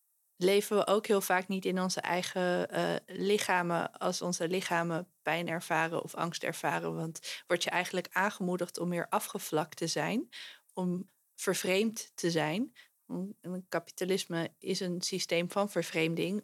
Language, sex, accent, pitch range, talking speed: Dutch, female, Dutch, 175-205 Hz, 140 wpm